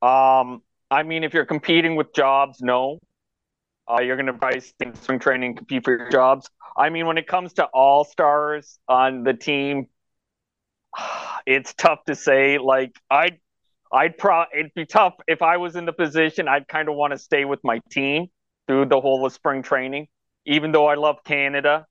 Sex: male